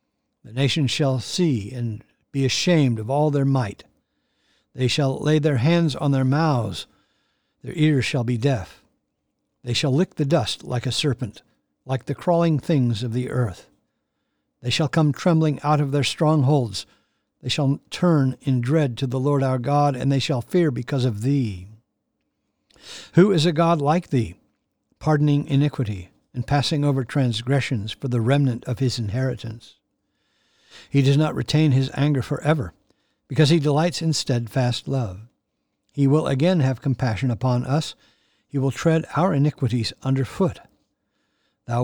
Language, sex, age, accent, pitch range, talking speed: English, male, 60-79, American, 125-150 Hz, 160 wpm